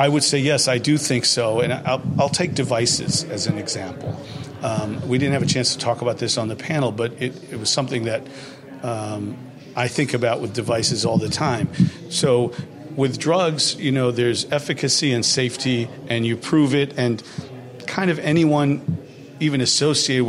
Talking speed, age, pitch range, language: 185 wpm, 50-69, 120-145 Hz, English